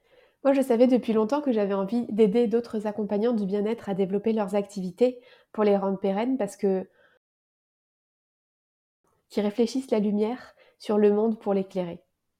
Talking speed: 155 wpm